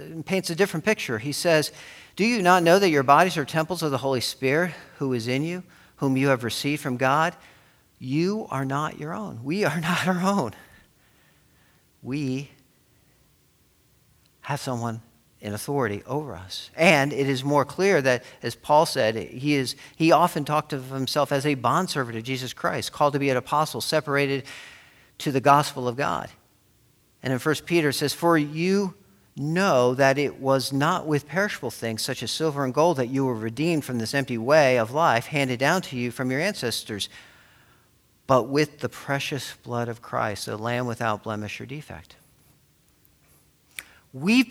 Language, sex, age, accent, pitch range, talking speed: English, male, 50-69, American, 125-165 Hz, 175 wpm